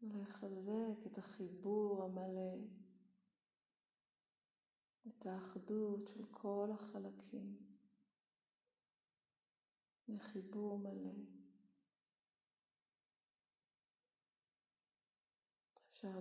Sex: female